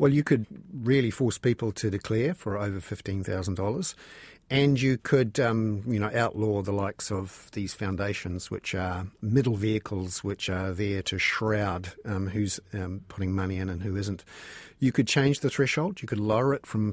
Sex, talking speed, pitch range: male, 190 wpm, 105-125 Hz